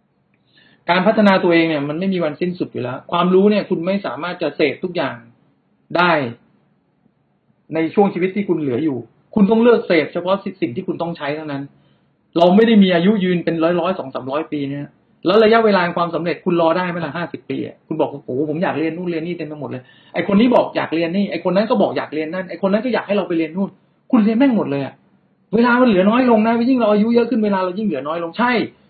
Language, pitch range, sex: English, 155-200 Hz, male